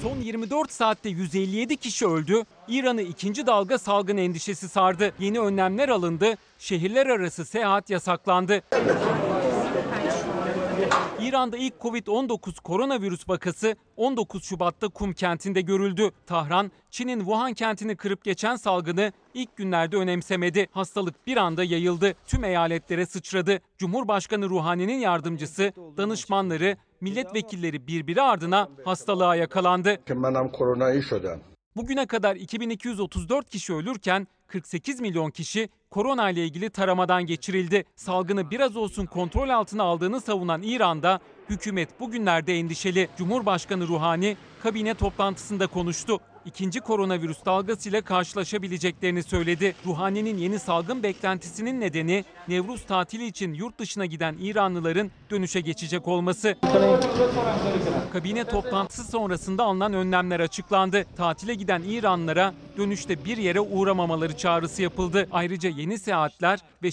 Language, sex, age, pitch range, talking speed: Turkish, male, 40-59, 175-215 Hz, 110 wpm